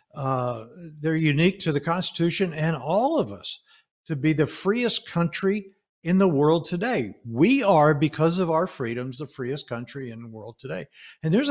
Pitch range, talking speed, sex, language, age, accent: 135-185 Hz, 175 wpm, male, English, 60-79, American